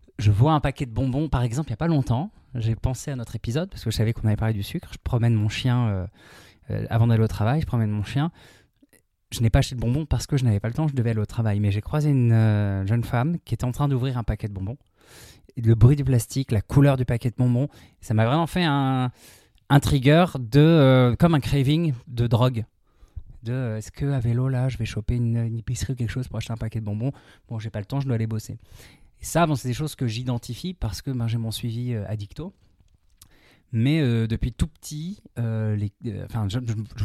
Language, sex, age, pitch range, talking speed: French, male, 20-39, 110-130 Hz, 255 wpm